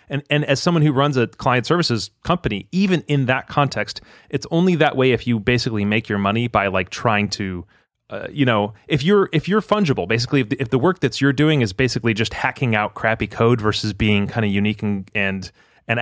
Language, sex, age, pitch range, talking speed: English, male, 30-49, 105-135 Hz, 225 wpm